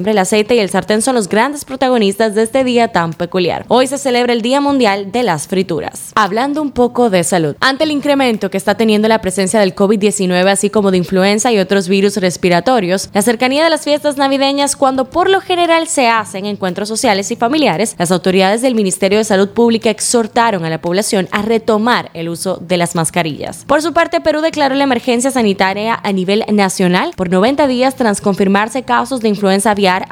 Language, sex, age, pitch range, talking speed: Spanish, female, 10-29, 195-255 Hz, 200 wpm